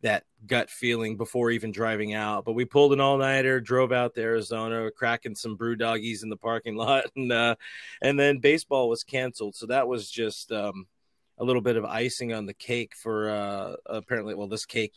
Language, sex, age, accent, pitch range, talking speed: English, male, 30-49, American, 110-125 Hz, 200 wpm